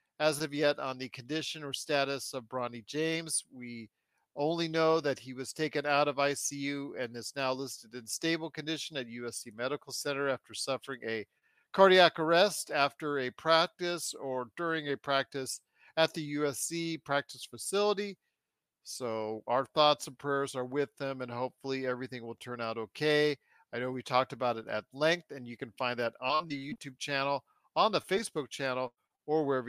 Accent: American